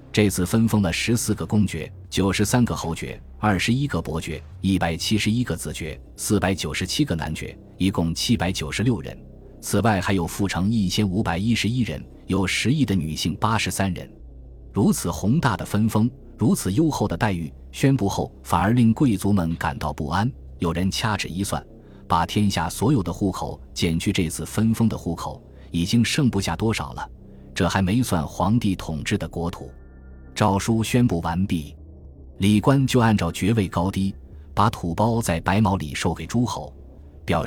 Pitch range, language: 80-110 Hz, Chinese